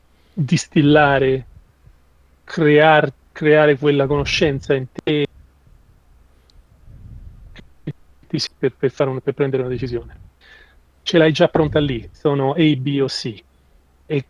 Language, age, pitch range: Italian, 40-59, 120-150 Hz